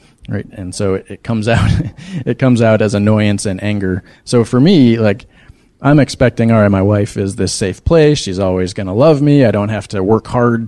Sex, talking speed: male, 220 wpm